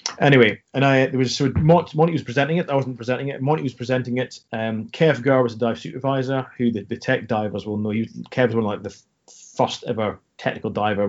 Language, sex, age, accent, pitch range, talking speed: English, male, 30-49, British, 110-130 Hz, 235 wpm